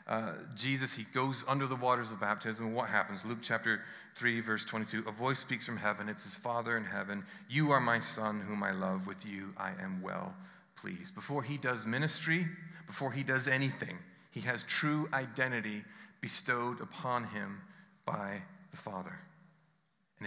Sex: male